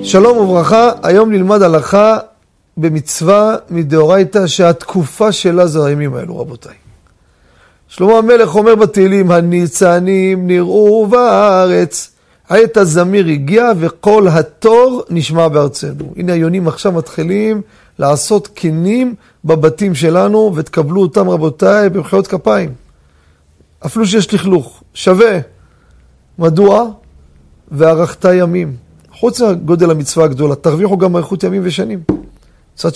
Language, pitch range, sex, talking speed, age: Hebrew, 135-205 Hz, male, 105 wpm, 40-59